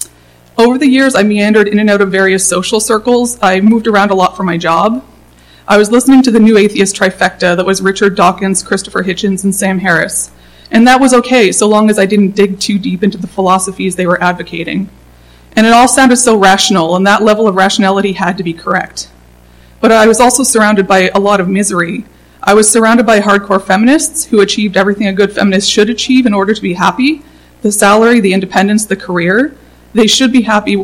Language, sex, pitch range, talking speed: English, female, 185-225 Hz, 210 wpm